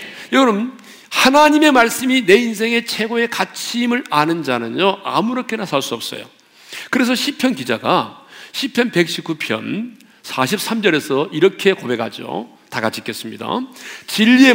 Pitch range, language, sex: 210-270 Hz, Korean, male